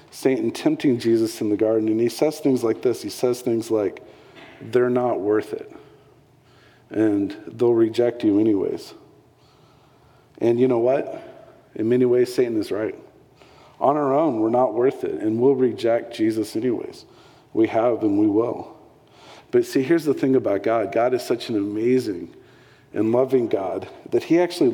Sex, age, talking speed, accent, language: male, 40-59, 170 wpm, American, English